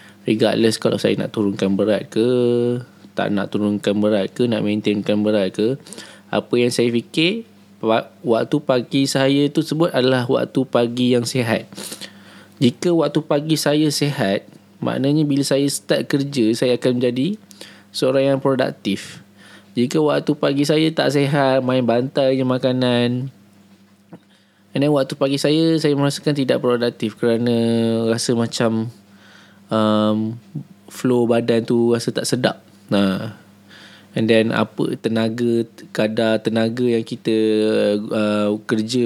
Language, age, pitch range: Indonesian, 20-39, 110-130 Hz